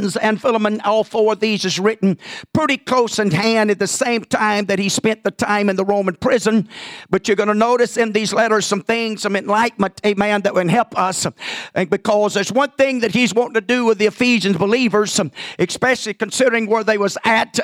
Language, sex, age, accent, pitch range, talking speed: English, male, 50-69, American, 205-235 Hz, 210 wpm